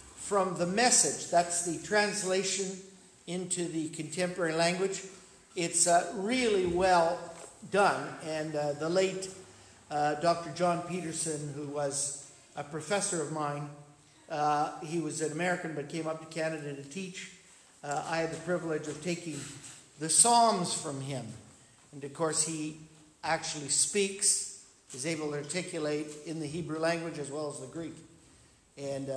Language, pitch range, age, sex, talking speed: English, 145-175 Hz, 50-69, male, 150 wpm